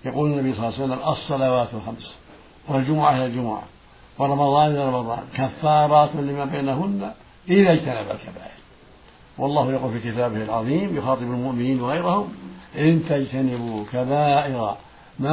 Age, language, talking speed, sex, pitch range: 60-79, Arabic, 125 wpm, male, 115-150 Hz